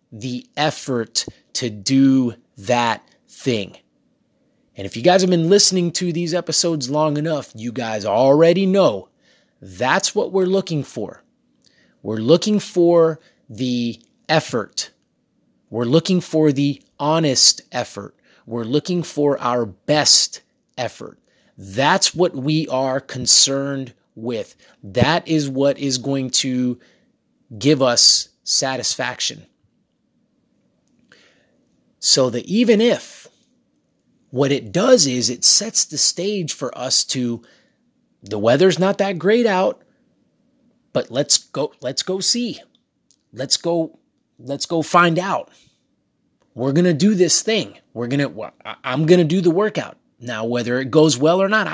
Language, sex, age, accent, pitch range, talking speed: English, male, 30-49, American, 125-180 Hz, 130 wpm